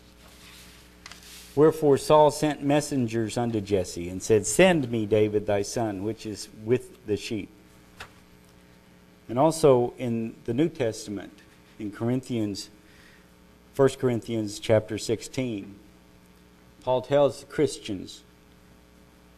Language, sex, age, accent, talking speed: English, male, 50-69, American, 105 wpm